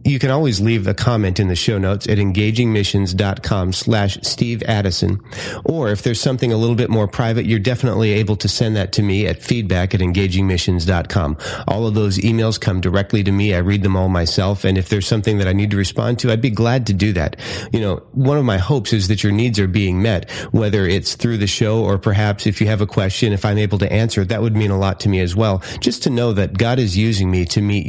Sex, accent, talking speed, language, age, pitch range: male, American, 245 wpm, English, 30-49, 100-120 Hz